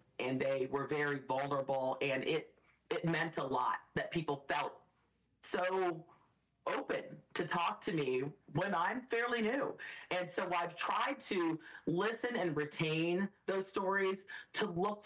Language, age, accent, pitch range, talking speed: English, 40-59, American, 150-180 Hz, 145 wpm